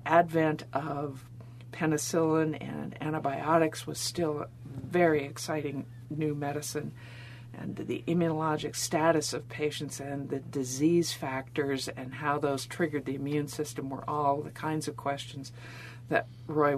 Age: 50-69